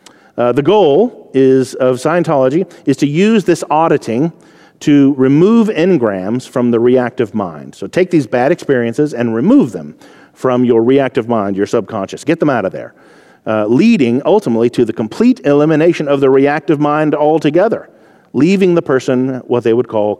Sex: male